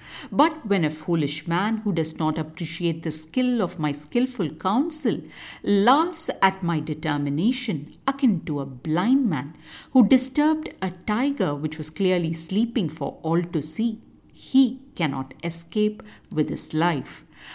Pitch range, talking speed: 160-250 Hz, 145 wpm